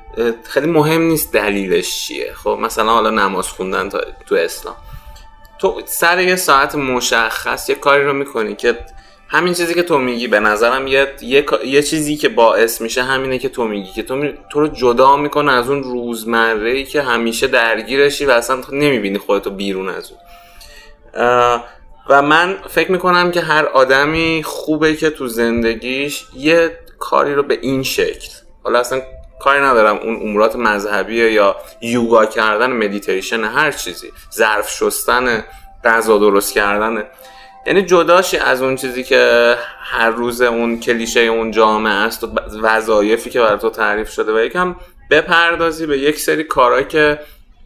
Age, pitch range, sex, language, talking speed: 20-39, 115-170 Hz, male, Persian, 155 wpm